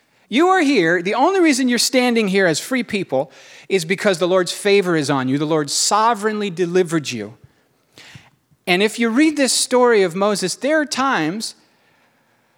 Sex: male